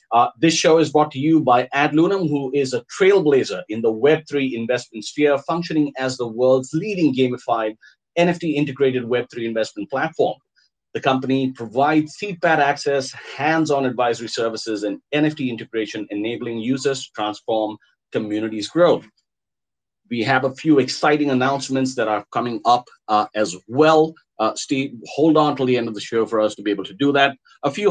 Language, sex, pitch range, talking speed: English, male, 115-150 Hz, 170 wpm